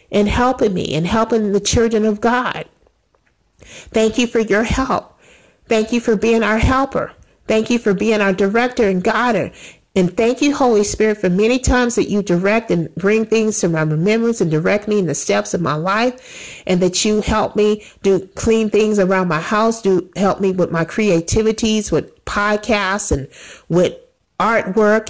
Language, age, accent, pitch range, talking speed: English, 50-69, American, 190-225 Hz, 180 wpm